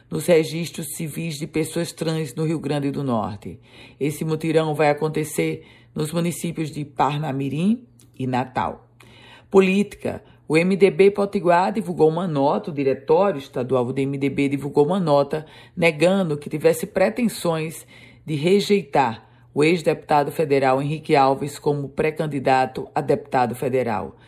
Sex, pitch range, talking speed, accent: female, 140-170 Hz, 130 wpm, Brazilian